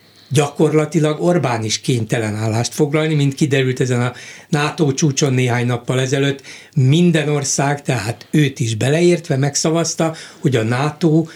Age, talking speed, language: 60-79, 130 wpm, Hungarian